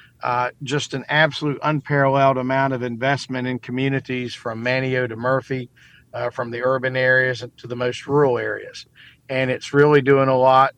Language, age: English, 50-69